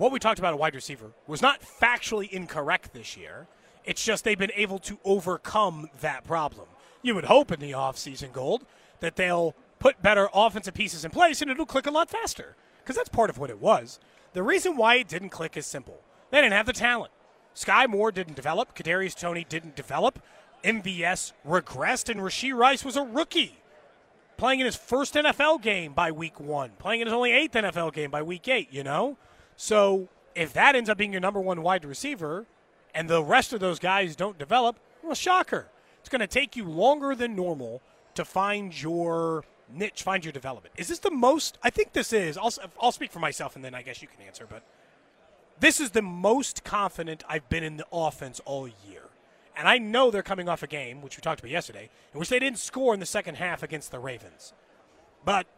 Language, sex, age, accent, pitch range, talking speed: English, male, 30-49, American, 160-240 Hz, 210 wpm